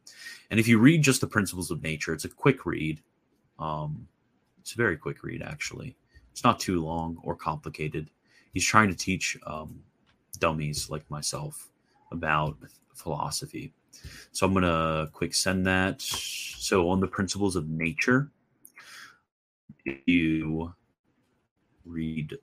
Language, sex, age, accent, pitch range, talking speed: English, male, 30-49, American, 80-100 Hz, 140 wpm